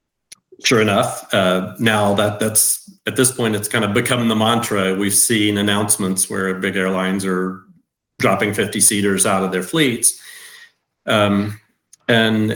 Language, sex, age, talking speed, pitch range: English, male, 40-59, 150 wpm, 100-120 Hz